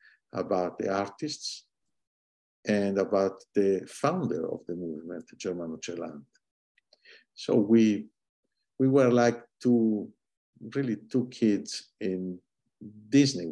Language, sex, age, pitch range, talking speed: English, male, 60-79, 95-115 Hz, 100 wpm